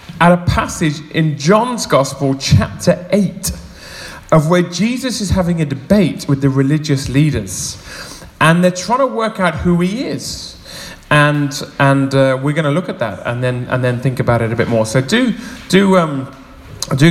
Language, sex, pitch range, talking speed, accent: English, male, 125-180 Hz, 180 wpm, British